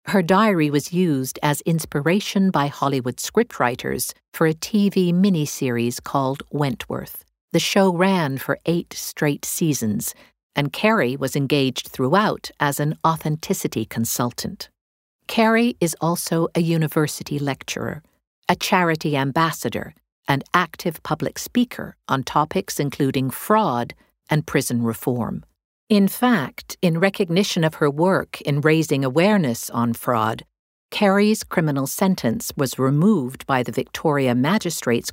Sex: female